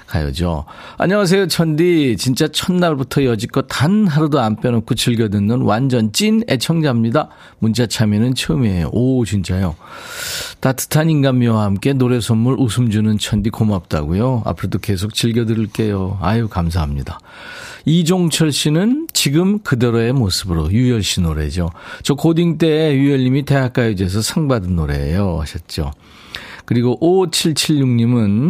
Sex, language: male, Korean